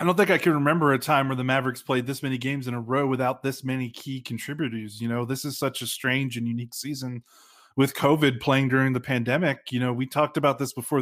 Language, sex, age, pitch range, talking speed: English, male, 20-39, 120-145 Hz, 250 wpm